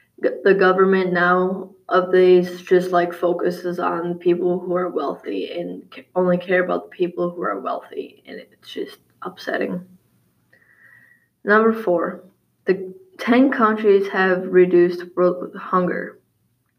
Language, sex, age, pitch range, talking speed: English, female, 10-29, 175-205 Hz, 120 wpm